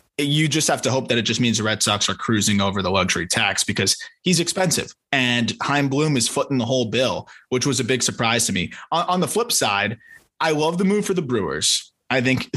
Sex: male